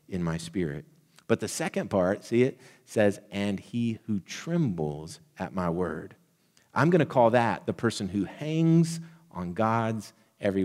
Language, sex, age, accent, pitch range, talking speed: English, male, 40-59, American, 100-120 Hz, 160 wpm